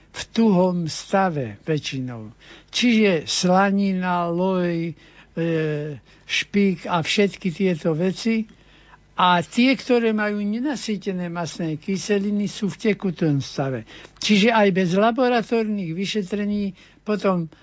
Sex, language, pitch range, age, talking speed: male, Slovak, 165-195 Hz, 60-79, 100 wpm